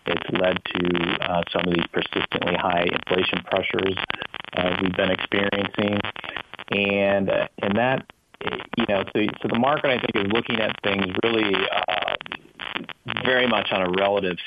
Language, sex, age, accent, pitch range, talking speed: English, male, 30-49, American, 85-100 Hz, 160 wpm